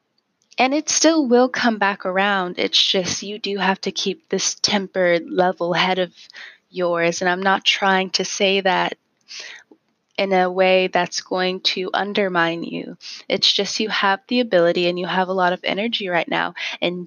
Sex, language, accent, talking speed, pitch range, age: female, English, American, 180 wpm, 185-225 Hz, 20-39